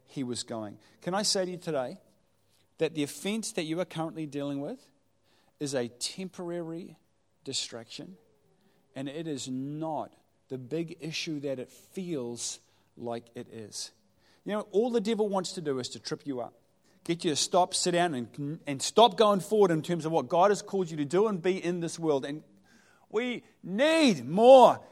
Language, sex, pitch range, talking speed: English, male, 155-220 Hz, 190 wpm